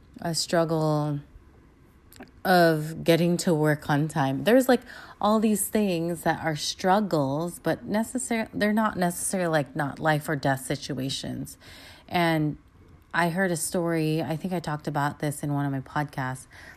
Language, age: English, 30-49